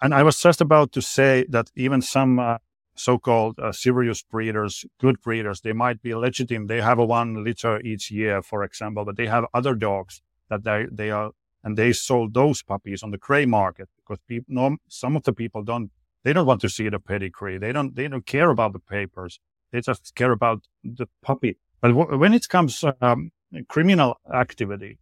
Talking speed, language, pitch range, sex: 205 wpm, English, 105-130 Hz, male